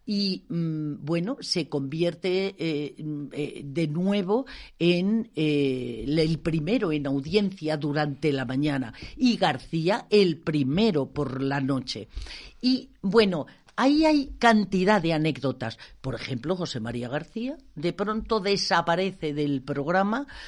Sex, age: female, 50-69